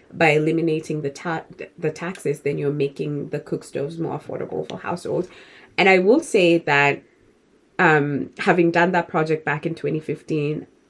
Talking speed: 155 wpm